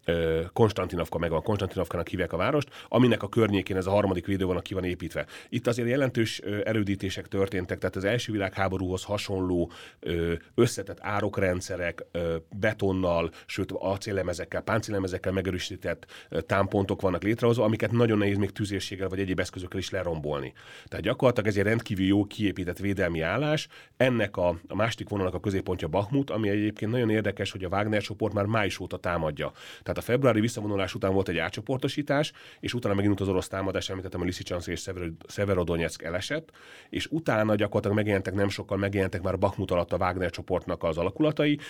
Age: 30-49